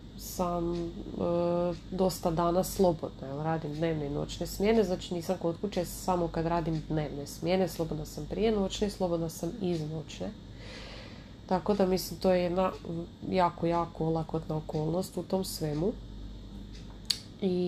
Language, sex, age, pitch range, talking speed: Croatian, female, 30-49, 150-185 Hz, 145 wpm